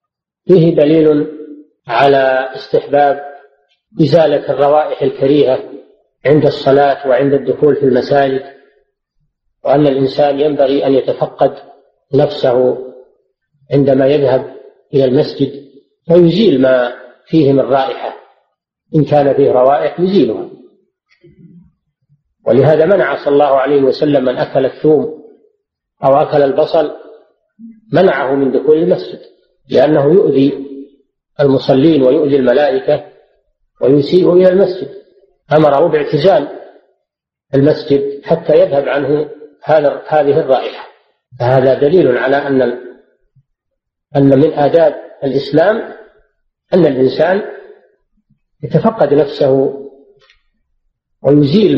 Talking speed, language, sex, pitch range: 90 wpm, Arabic, male, 140-180 Hz